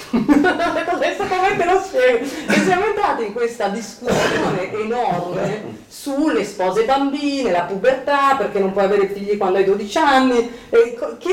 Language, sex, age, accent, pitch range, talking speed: Italian, female, 40-59, native, 180-255 Hz, 130 wpm